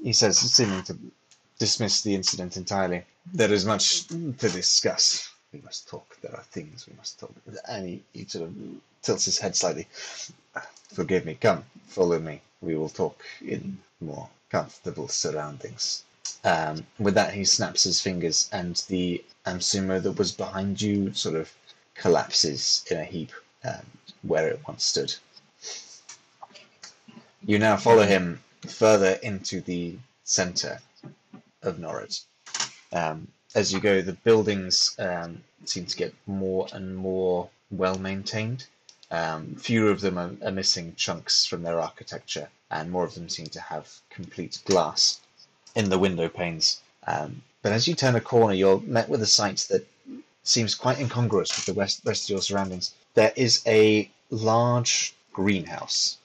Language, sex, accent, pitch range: English, male, British, 90-110 Hz